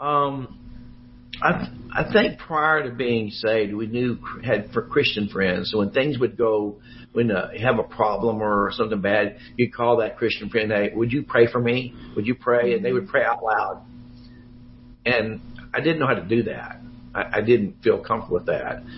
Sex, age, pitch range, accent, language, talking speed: male, 60-79, 105-125 Hz, American, English, 205 wpm